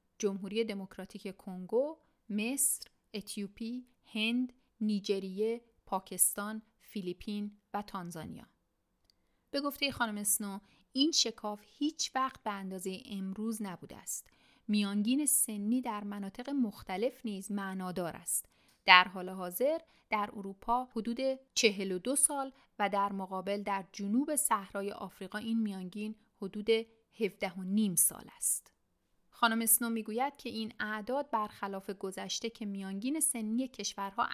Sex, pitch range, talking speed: female, 190-235 Hz, 115 wpm